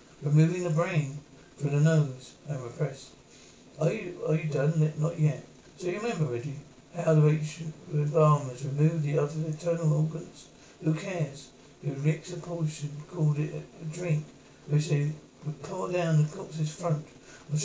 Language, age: English, 60-79